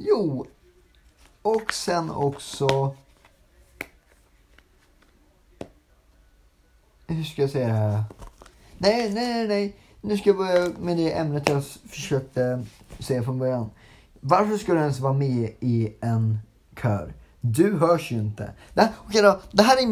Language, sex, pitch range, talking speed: Swedish, male, 120-180 Hz, 135 wpm